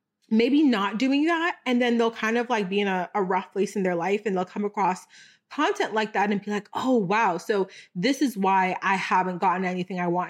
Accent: American